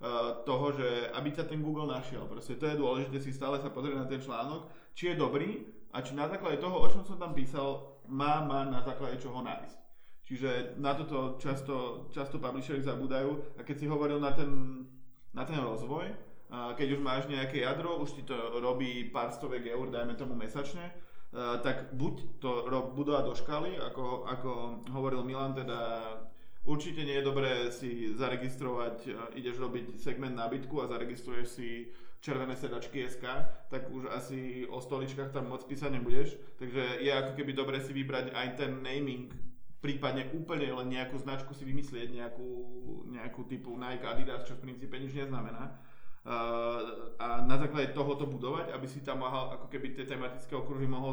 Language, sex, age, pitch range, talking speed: Czech, male, 20-39, 125-140 Hz, 170 wpm